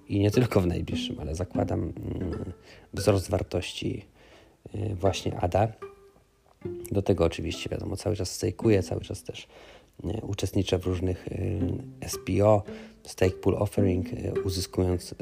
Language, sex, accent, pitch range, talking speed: Polish, male, native, 90-110 Hz, 115 wpm